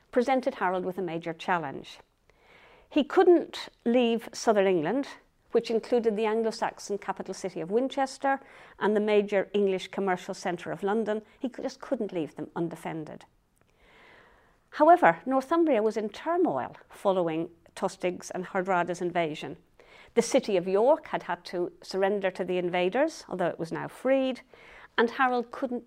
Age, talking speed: 50-69, 145 wpm